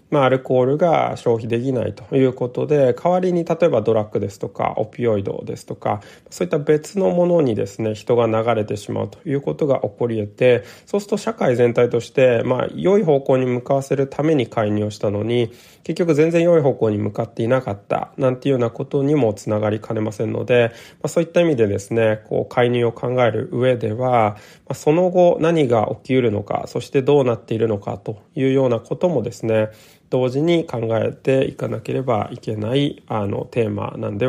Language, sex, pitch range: Japanese, male, 110-140 Hz